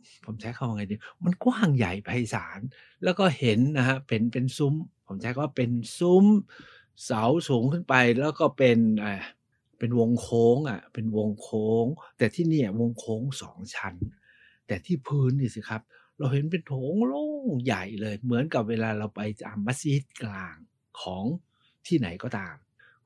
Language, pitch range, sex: Thai, 110-150 Hz, male